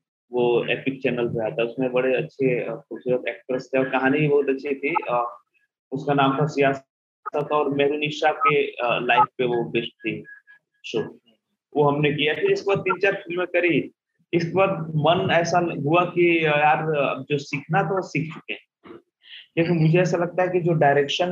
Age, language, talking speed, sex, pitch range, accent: 20-39, Hindi, 170 wpm, male, 135-170 Hz, native